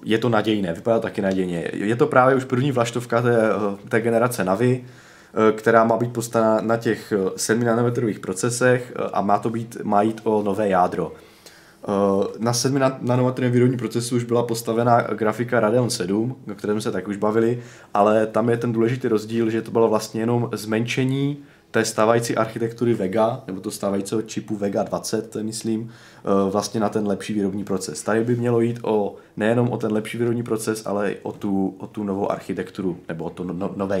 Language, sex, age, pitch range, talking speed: Czech, male, 20-39, 105-120 Hz, 175 wpm